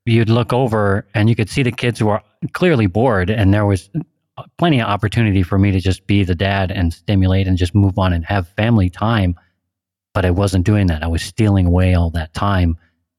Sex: male